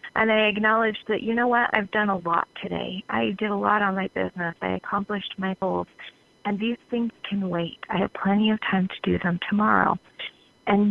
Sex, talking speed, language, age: female, 210 wpm, English, 30-49